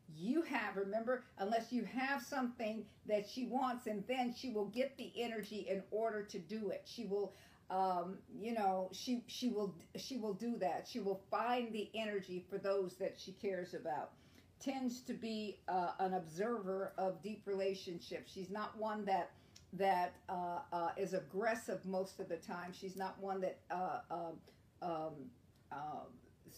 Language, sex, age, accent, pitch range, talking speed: English, female, 50-69, American, 190-230 Hz, 170 wpm